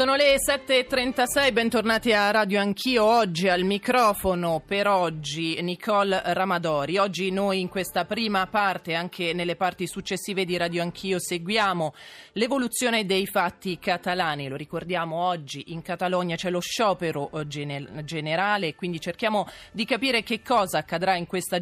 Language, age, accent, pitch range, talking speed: Italian, 30-49, native, 155-195 Hz, 140 wpm